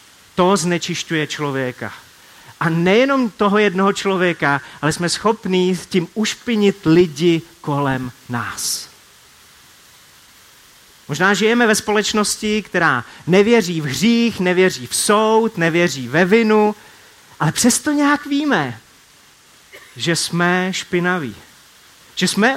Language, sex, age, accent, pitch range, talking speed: Czech, male, 30-49, native, 150-210 Hz, 105 wpm